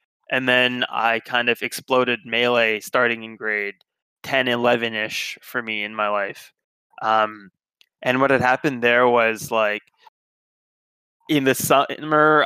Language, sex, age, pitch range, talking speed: English, male, 20-39, 115-135 Hz, 135 wpm